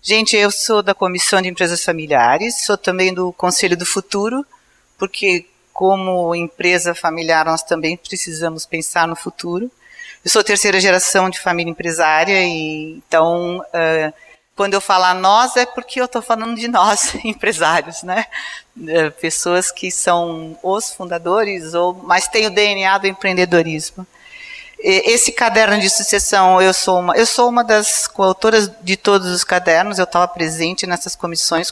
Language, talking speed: Portuguese, 150 wpm